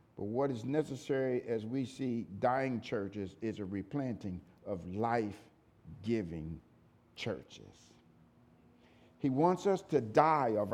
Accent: American